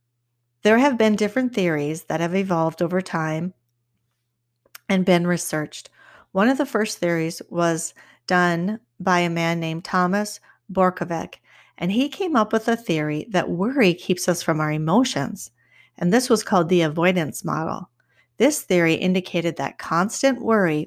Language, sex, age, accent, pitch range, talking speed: English, female, 40-59, American, 165-215 Hz, 150 wpm